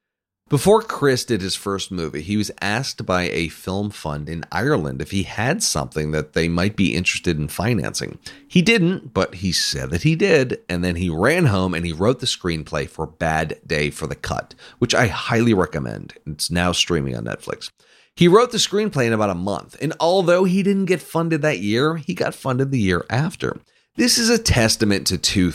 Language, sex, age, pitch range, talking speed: English, male, 30-49, 90-140 Hz, 205 wpm